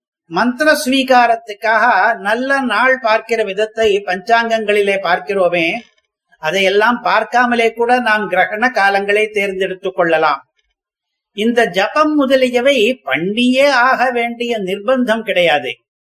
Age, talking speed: 50-69, 85 wpm